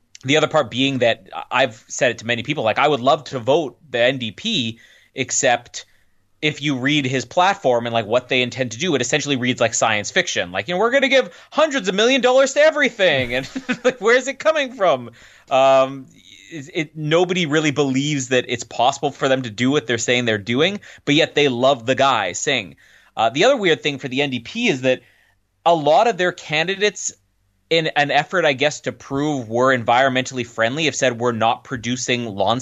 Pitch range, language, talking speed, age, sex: 125-155 Hz, English, 210 wpm, 30-49, male